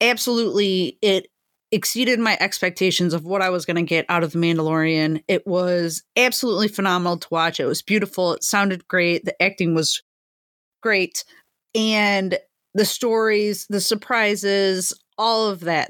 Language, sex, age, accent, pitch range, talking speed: English, female, 30-49, American, 180-240 Hz, 150 wpm